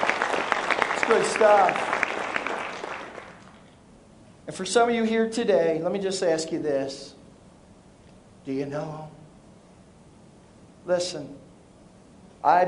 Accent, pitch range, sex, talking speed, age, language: American, 155-185 Hz, male, 100 wpm, 50-69, English